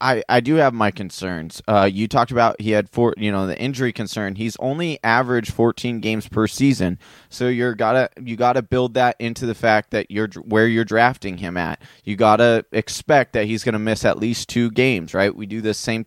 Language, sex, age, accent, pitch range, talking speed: English, male, 20-39, American, 105-130 Hz, 215 wpm